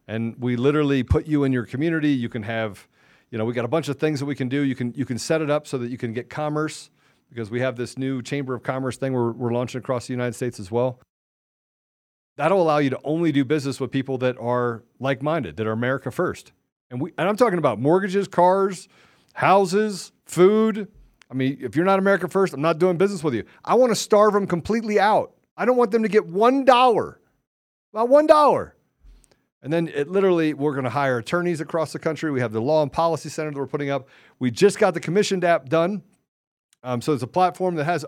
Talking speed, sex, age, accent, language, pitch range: 230 wpm, male, 40-59, American, English, 125-165 Hz